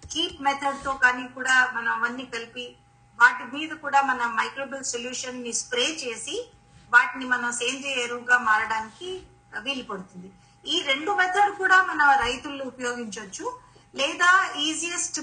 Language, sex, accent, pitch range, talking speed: Telugu, female, native, 245-295 Hz, 125 wpm